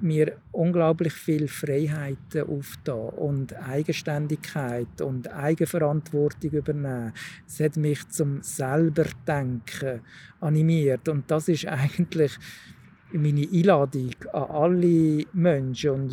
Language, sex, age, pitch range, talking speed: German, male, 50-69, 145-165 Hz, 95 wpm